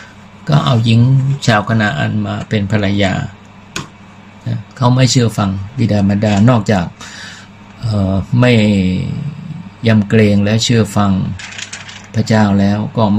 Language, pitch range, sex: Thai, 100-110 Hz, male